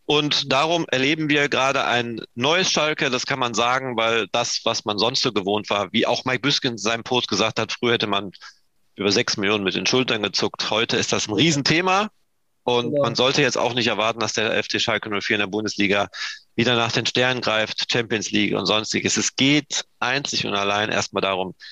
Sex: male